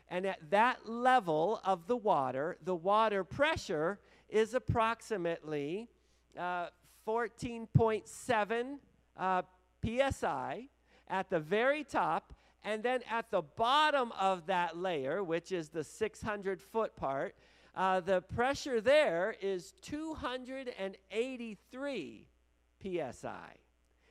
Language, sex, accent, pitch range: English, male, American, 170-230 Hz